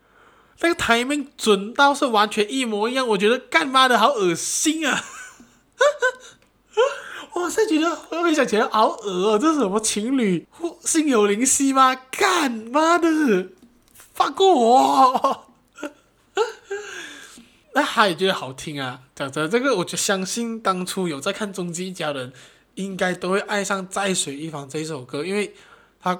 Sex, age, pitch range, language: male, 20-39, 145-225 Hz, Chinese